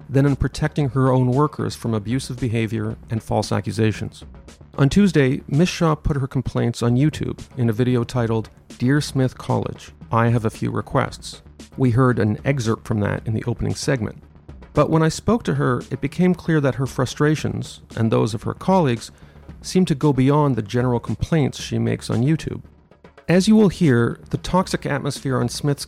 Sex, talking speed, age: male, 185 wpm, 40-59